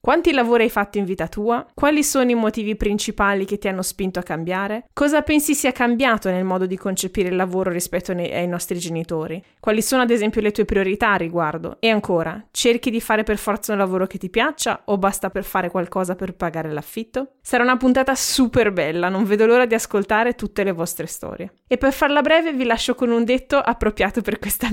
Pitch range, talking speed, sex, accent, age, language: 190-240 Hz, 210 wpm, female, native, 20-39, Italian